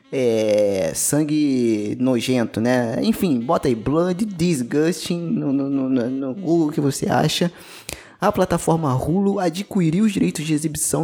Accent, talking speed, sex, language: Brazilian, 135 wpm, male, Portuguese